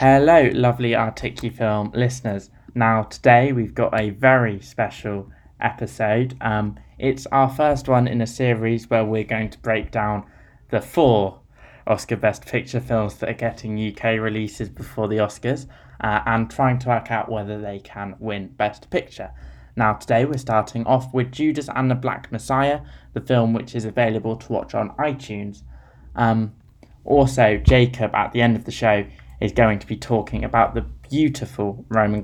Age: 20-39